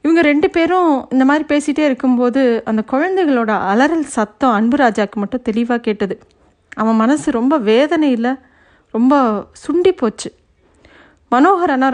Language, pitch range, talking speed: Tamil, 215-260 Hz, 120 wpm